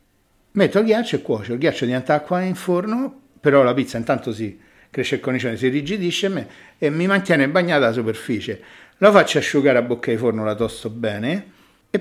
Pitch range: 120-165 Hz